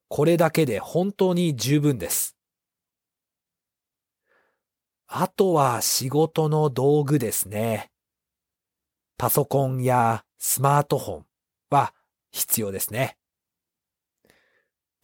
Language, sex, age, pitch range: Japanese, male, 40-59, 130-175 Hz